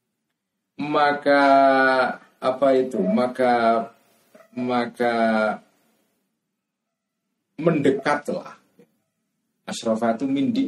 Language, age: Indonesian, 50-69